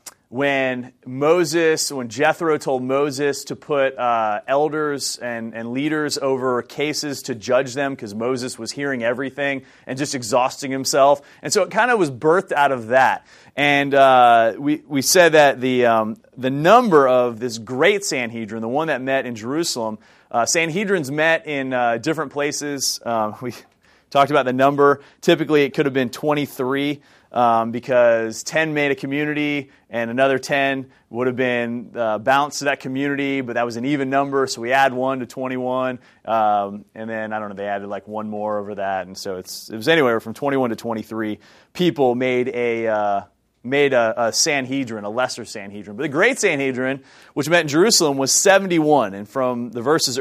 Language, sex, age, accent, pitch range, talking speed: English, male, 30-49, American, 120-145 Hz, 180 wpm